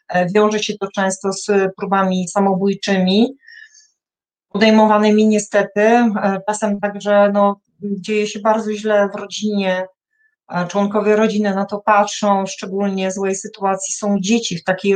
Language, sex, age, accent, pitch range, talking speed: Polish, female, 30-49, native, 195-225 Hz, 120 wpm